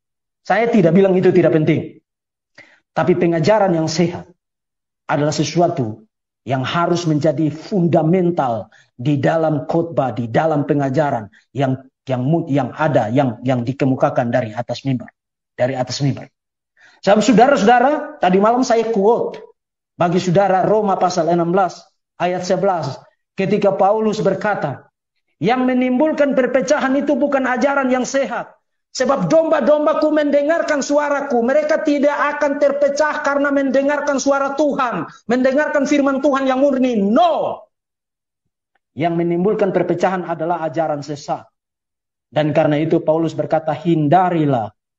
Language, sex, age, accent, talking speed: Indonesian, male, 50-69, native, 115 wpm